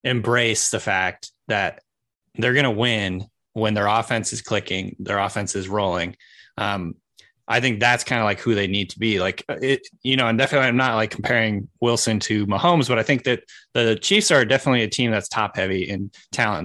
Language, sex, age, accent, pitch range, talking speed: English, male, 20-39, American, 110-130 Hz, 205 wpm